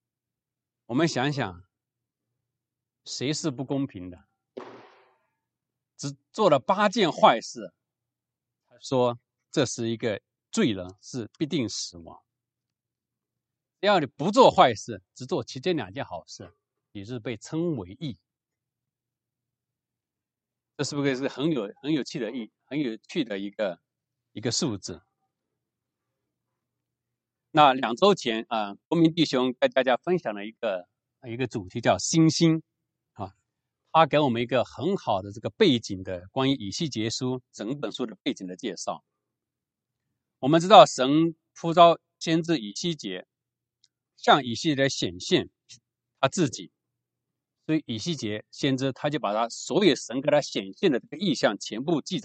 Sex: male